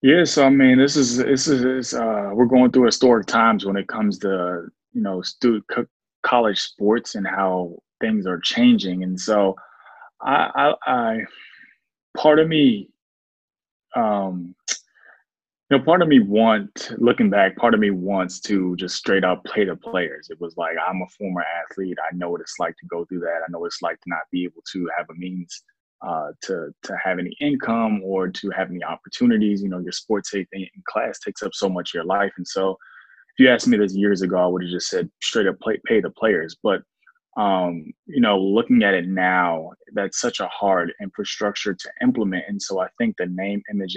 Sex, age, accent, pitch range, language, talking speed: male, 20-39, American, 90-125 Hz, English, 205 wpm